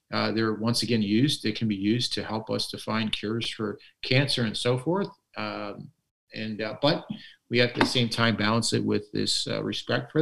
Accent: American